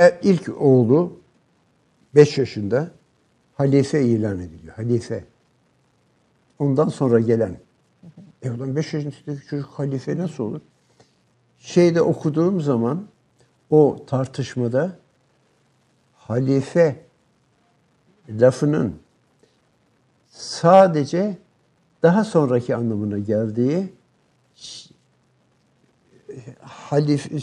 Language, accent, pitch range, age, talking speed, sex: Turkish, native, 125-160 Hz, 60-79, 70 wpm, male